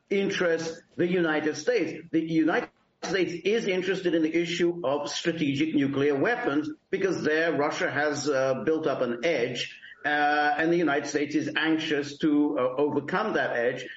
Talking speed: 160 wpm